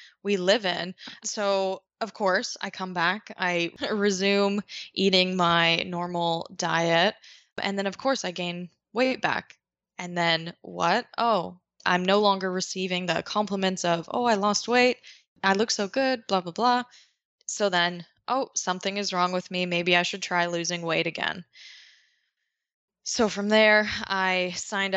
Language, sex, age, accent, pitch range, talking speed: English, female, 20-39, American, 175-205 Hz, 155 wpm